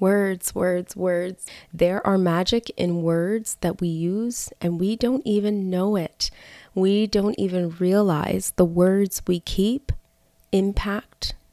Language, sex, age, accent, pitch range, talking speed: English, female, 20-39, American, 175-210 Hz, 135 wpm